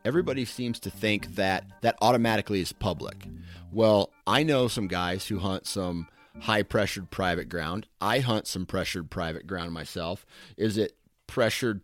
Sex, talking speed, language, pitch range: male, 150 wpm, English, 90-105 Hz